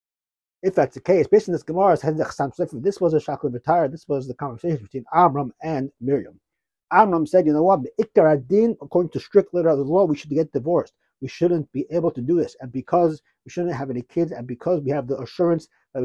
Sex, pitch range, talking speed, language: male, 140-185 Hz, 225 wpm, English